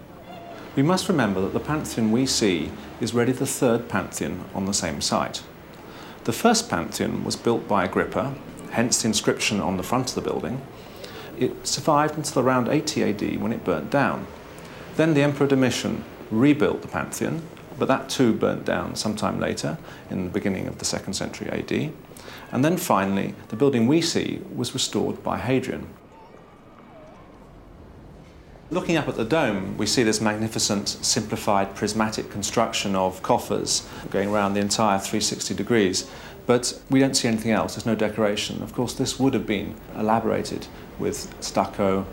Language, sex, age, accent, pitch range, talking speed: English, male, 40-59, British, 100-130 Hz, 160 wpm